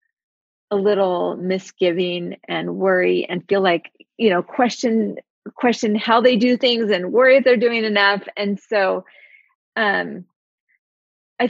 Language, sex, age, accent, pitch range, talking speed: English, female, 30-49, American, 185-235 Hz, 135 wpm